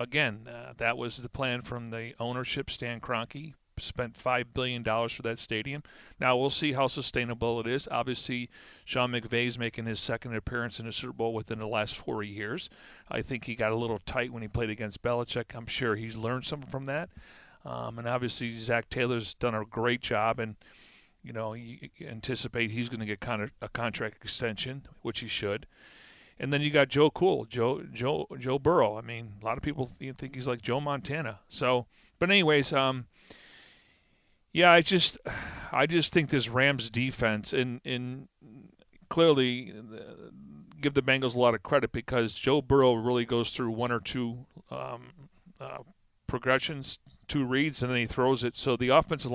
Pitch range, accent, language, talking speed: 115-135 Hz, American, English, 190 wpm